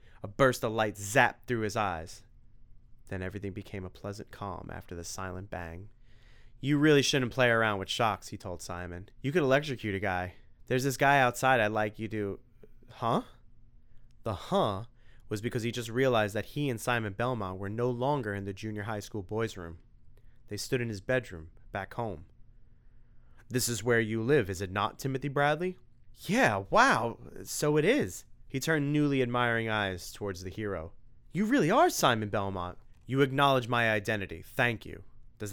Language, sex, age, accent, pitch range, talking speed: English, male, 30-49, American, 105-125 Hz, 175 wpm